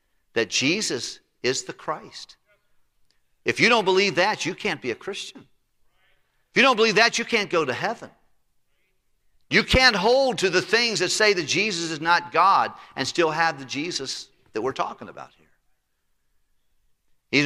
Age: 50-69